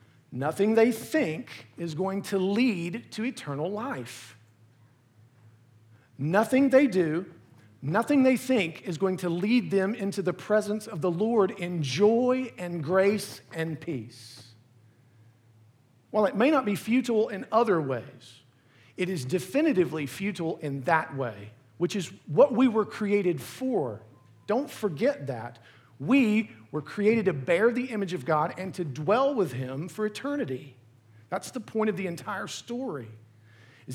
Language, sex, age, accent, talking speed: English, male, 50-69, American, 145 wpm